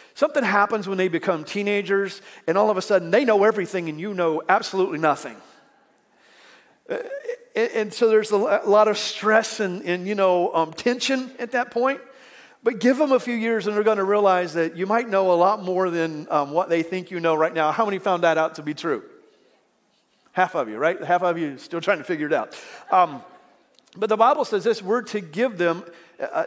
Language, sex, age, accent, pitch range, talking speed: English, male, 40-59, American, 170-220 Hz, 220 wpm